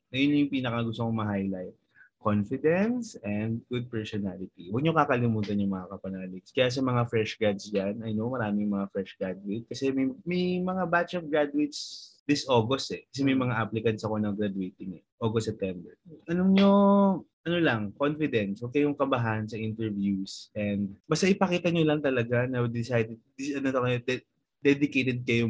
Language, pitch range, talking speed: Filipino, 110-150 Hz, 175 wpm